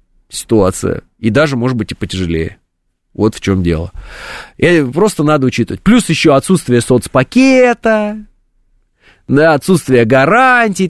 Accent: native